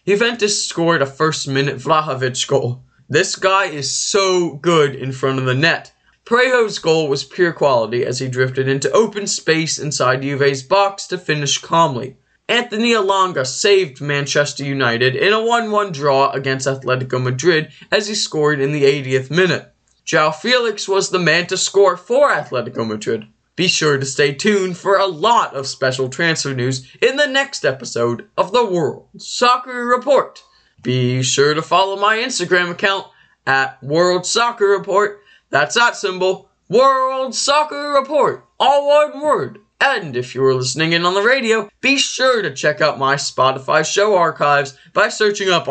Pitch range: 135-205 Hz